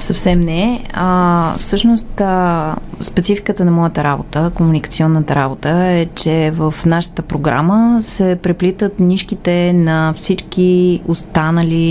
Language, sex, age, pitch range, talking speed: Bulgarian, female, 20-39, 150-175 Hz, 110 wpm